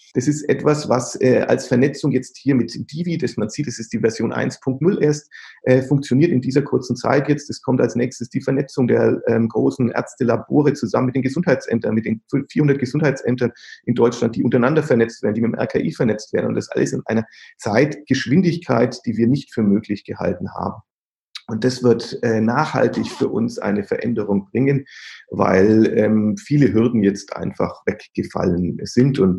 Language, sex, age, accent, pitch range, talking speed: German, male, 40-59, German, 110-145 Hz, 180 wpm